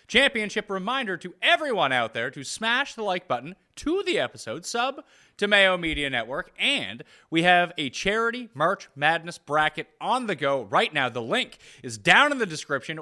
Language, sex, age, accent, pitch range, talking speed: English, male, 30-49, American, 140-215 Hz, 180 wpm